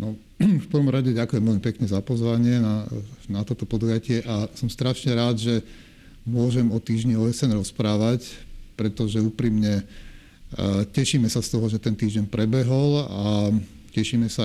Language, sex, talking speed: Slovak, male, 150 wpm